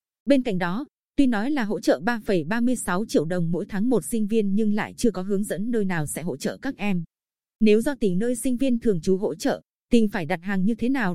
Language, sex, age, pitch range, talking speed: Vietnamese, female, 20-39, 185-230 Hz, 250 wpm